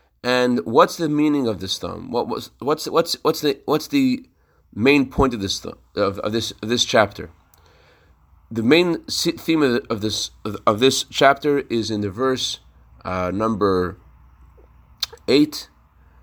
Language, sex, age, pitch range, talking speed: English, male, 30-49, 90-135 Hz, 150 wpm